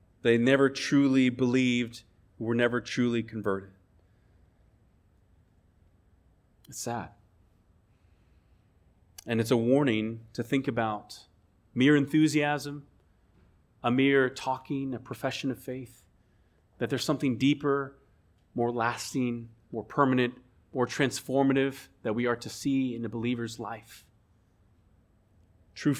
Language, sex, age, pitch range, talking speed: English, male, 30-49, 100-140 Hz, 105 wpm